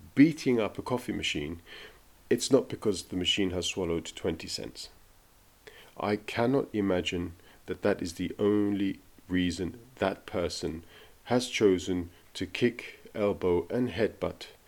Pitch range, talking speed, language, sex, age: 90-115 Hz, 130 wpm, English, male, 40-59